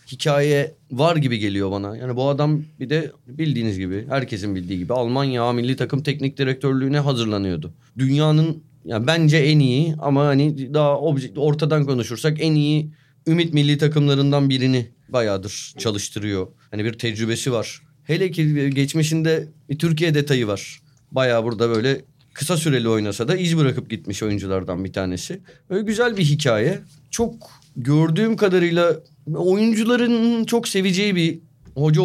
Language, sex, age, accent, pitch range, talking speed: Turkish, male, 30-49, native, 130-160 Hz, 140 wpm